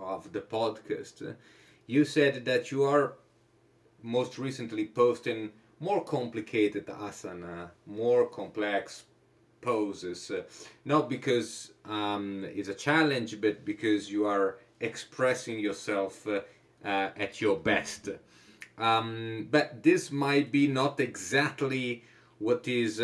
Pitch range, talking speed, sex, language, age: 110-140 Hz, 115 wpm, male, Italian, 30-49